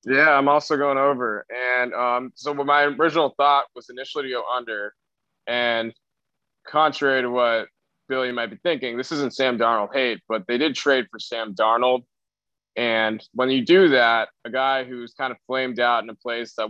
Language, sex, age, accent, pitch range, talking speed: English, male, 20-39, American, 110-130 Hz, 185 wpm